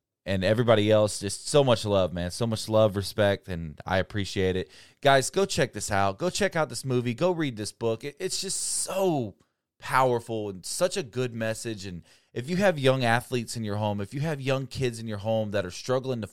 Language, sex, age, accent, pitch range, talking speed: English, male, 20-39, American, 105-135 Hz, 220 wpm